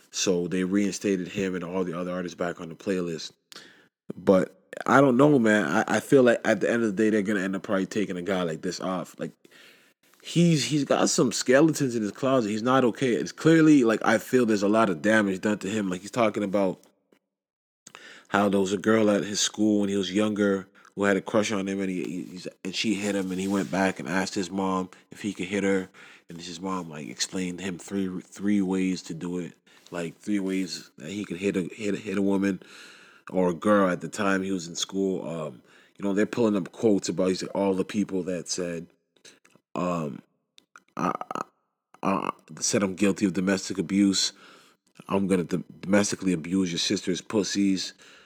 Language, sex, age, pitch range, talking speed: English, male, 20-39, 95-105 Hz, 215 wpm